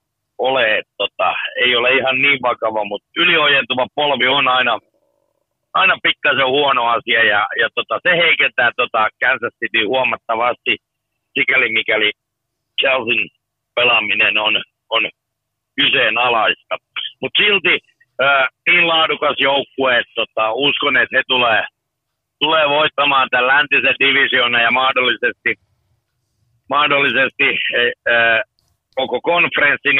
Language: Finnish